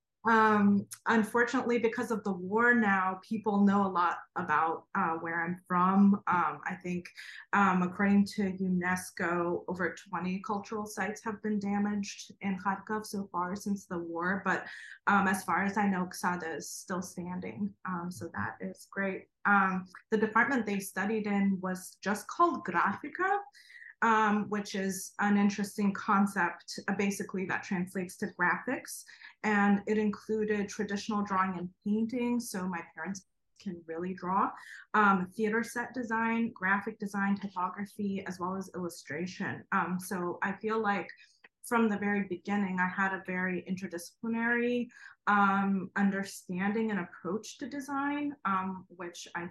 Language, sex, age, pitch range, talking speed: English, female, 20-39, 180-210 Hz, 150 wpm